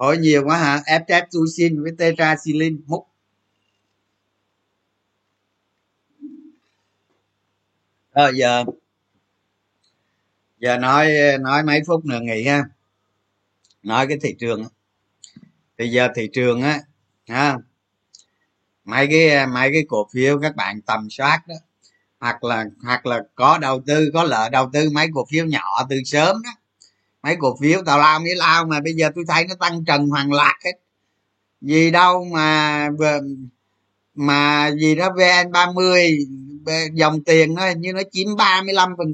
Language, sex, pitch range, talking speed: Vietnamese, male, 105-160 Hz, 145 wpm